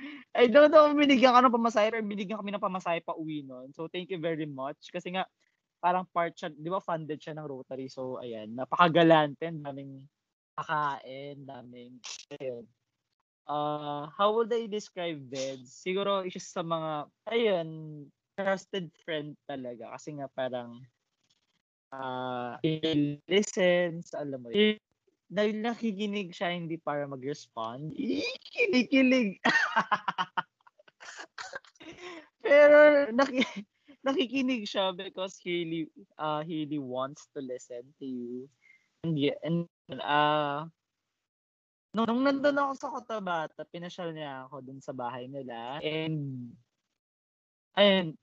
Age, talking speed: 20-39, 125 wpm